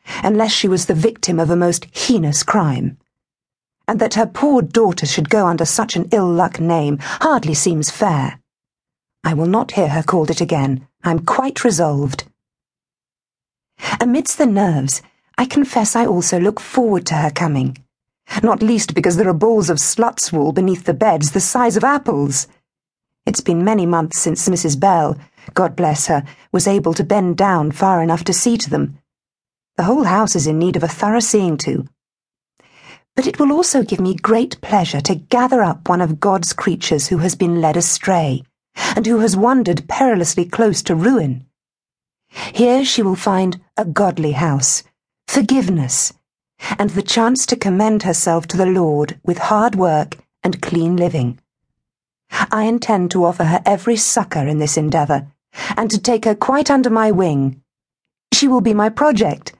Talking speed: 170 wpm